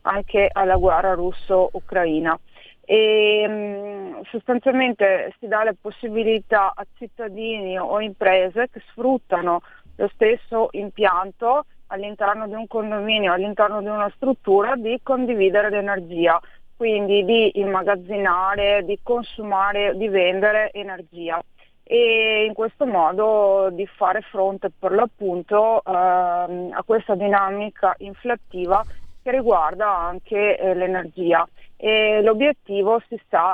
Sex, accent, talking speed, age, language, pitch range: female, native, 110 wpm, 30-49, Italian, 190-220 Hz